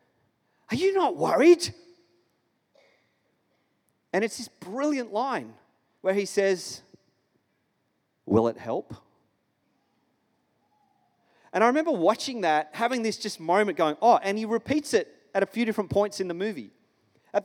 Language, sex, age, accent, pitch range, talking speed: English, male, 30-49, Australian, 185-245 Hz, 135 wpm